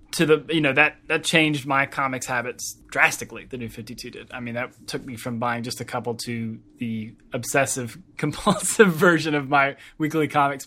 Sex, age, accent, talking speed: male, 20-39, American, 190 wpm